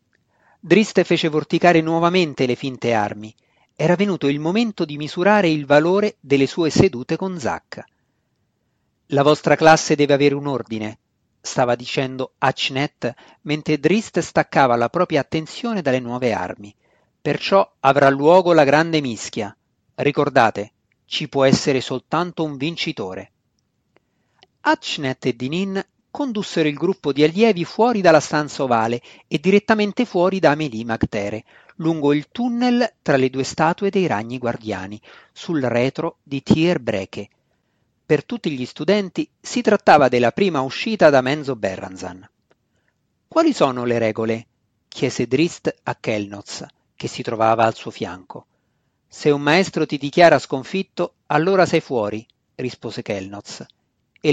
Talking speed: 135 wpm